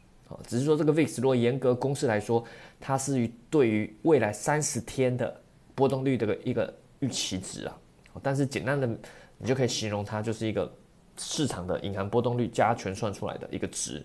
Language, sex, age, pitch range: Chinese, male, 20-39, 110-145 Hz